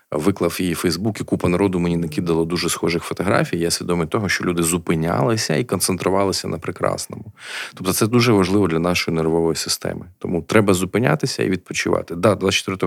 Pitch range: 85-105 Hz